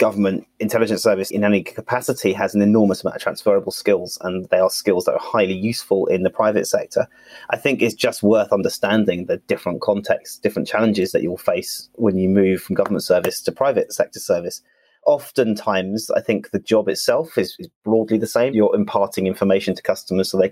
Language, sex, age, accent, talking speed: English, male, 30-49, British, 200 wpm